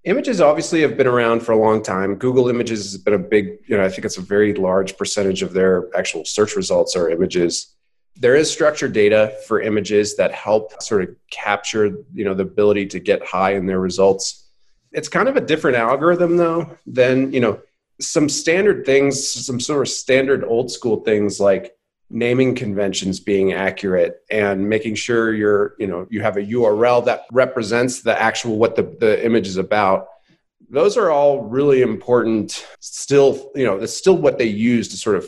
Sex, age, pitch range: male, 30-49, 100-130 Hz